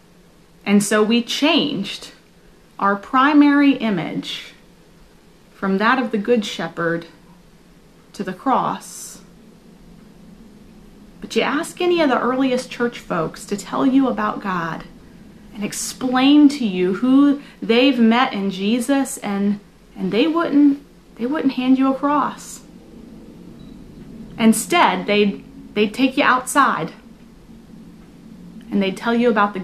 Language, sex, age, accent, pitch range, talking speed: English, female, 30-49, American, 190-240 Hz, 125 wpm